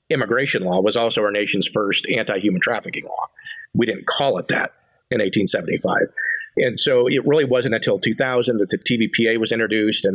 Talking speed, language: 175 wpm, English